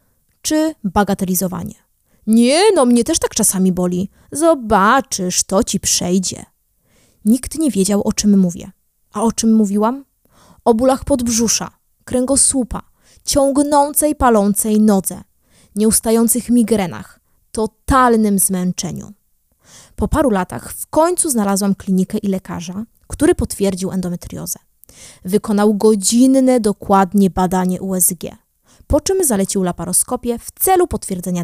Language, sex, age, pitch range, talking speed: Polish, female, 20-39, 185-250 Hz, 110 wpm